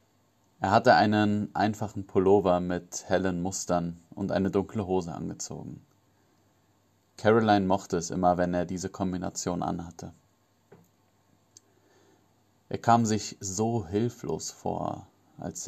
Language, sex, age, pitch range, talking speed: German, male, 30-49, 95-105 Hz, 110 wpm